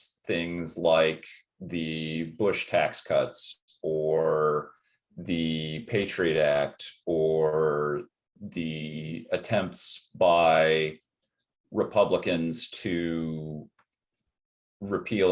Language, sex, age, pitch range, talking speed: English, male, 30-49, 80-105 Hz, 65 wpm